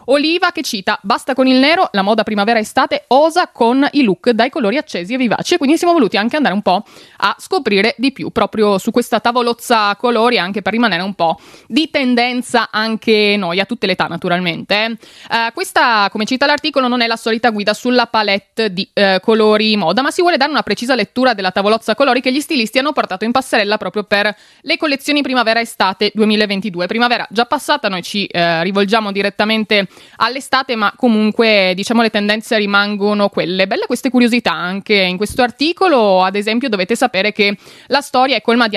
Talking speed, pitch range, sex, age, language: 185 wpm, 205-260 Hz, female, 20-39, Italian